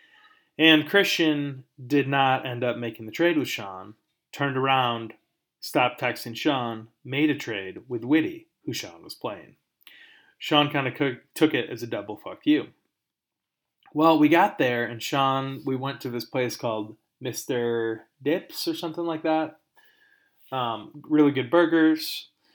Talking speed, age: 150 wpm, 30-49